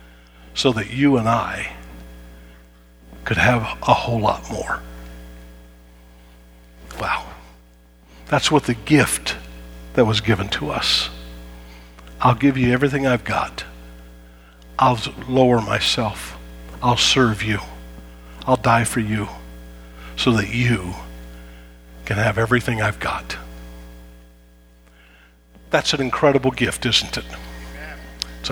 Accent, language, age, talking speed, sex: American, English, 50-69, 110 wpm, male